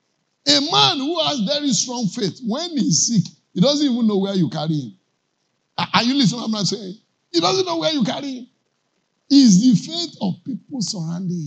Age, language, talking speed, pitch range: 50-69, English, 205 wpm, 165-240 Hz